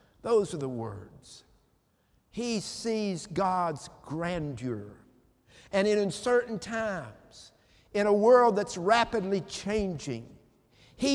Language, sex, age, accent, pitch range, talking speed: English, male, 50-69, American, 150-220 Hz, 100 wpm